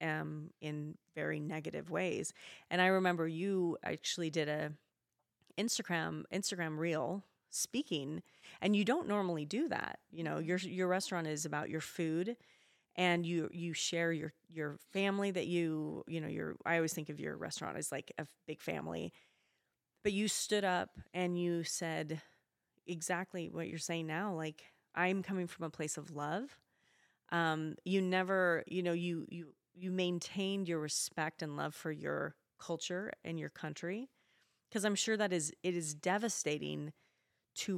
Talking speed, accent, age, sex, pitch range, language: 165 wpm, American, 30-49, female, 155-185 Hz, English